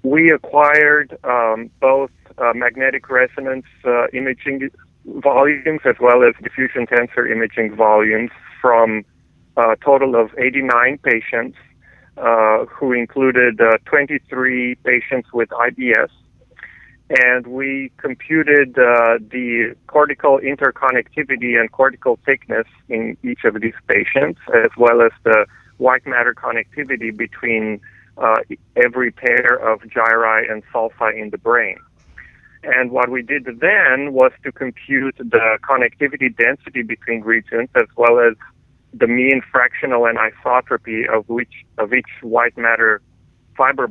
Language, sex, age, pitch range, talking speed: English, male, 40-59, 115-130 Hz, 125 wpm